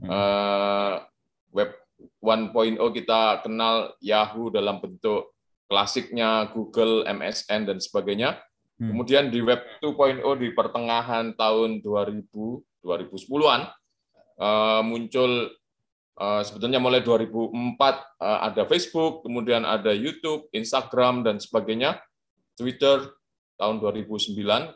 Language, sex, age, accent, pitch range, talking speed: Indonesian, male, 20-39, native, 105-130 Hz, 85 wpm